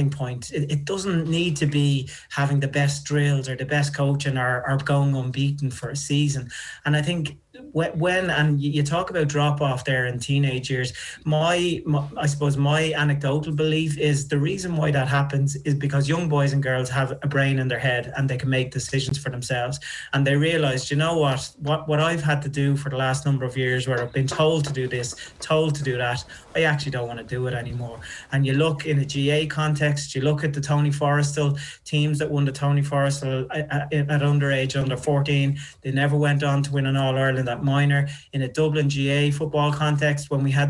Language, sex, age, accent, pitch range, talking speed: English, male, 30-49, Irish, 135-150 Hz, 220 wpm